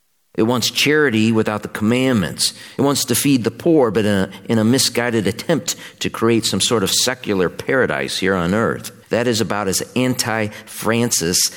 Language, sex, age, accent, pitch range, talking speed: English, male, 50-69, American, 85-125 Hz, 170 wpm